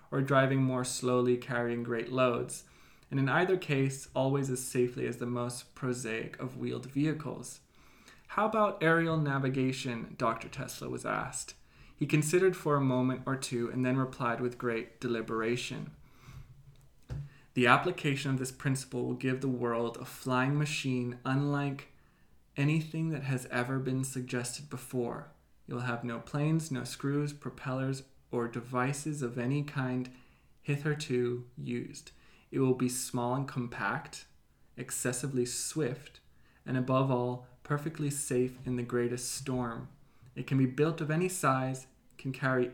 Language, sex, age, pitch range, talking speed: English, male, 20-39, 125-140 Hz, 145 wpm